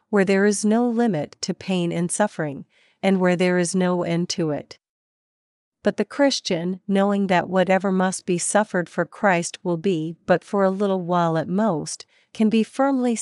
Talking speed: 180 wpm